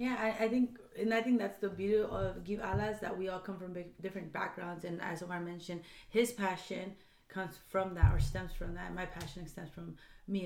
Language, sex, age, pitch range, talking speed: English, female, 30-49, 175-200 Hz, 225 wpm